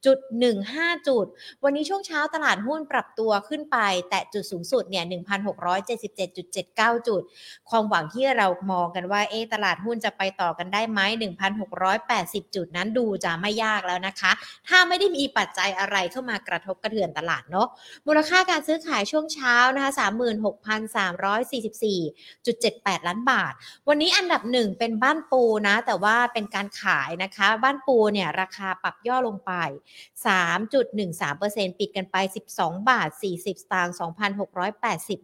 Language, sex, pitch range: Thai, female, 190-245 Hz